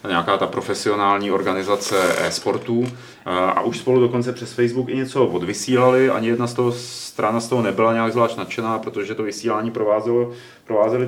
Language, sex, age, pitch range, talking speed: Czech, male, 30-49, 110-130 Hz, 155 wpm